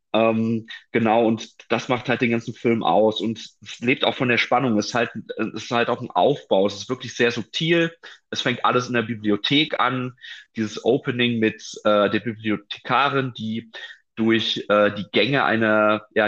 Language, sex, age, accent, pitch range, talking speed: German, male, 30-49, German, 110-125 Hz, 175 wpm